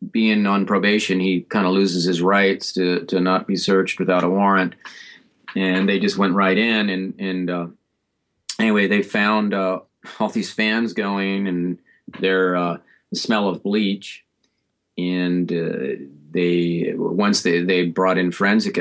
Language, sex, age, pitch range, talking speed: English, male, 40-59, 90-115 Hz, 155 wpm